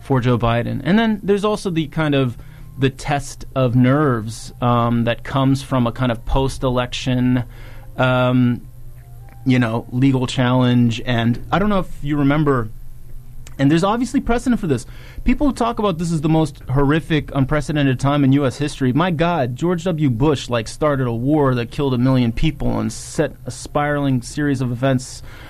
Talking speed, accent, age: 170 wpm, American, 30-49